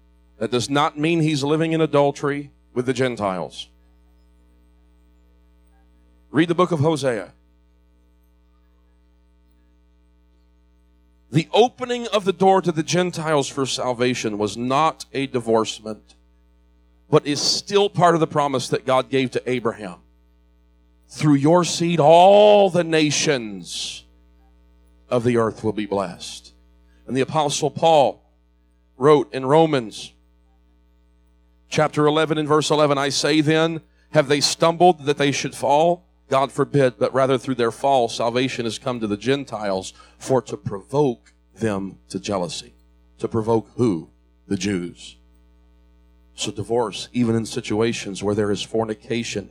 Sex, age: male, 40-59